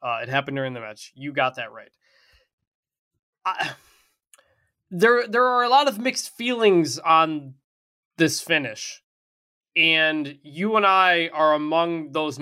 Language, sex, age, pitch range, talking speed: English, male, 20-39, 135-175 Hz, 140 wpm